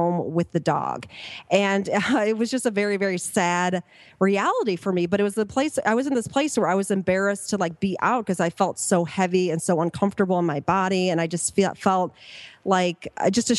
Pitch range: 175-205 Hz